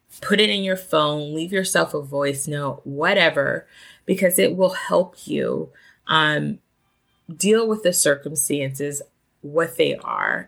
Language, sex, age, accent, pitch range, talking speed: English, female, 20-39, American, 150-190 Hz, 135 wpm